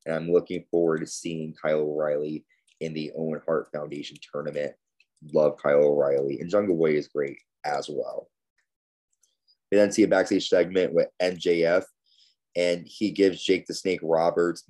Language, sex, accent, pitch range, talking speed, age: English, male, American, 80-95 Hz, 160 wpm, 20-39